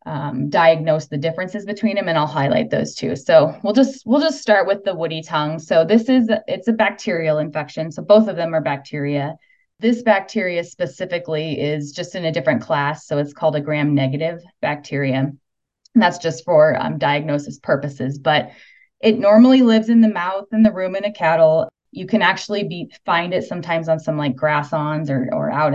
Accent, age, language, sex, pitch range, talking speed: American, 20-39, English, female, 150-200 Hz, 200 wpm